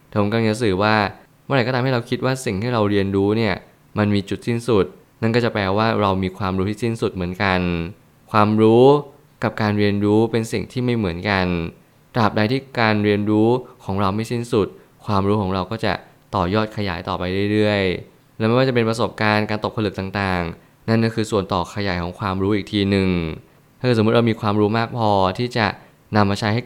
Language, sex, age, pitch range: Thai, male, 20-39, 100-120 Hz